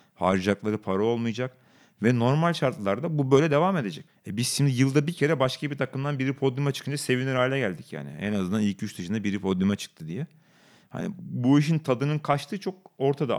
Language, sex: Turkish, male